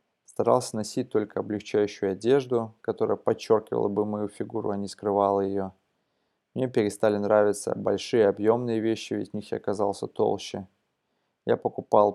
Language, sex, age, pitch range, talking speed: Russian, male, 20-39, 100-115 Hz, 140 wpm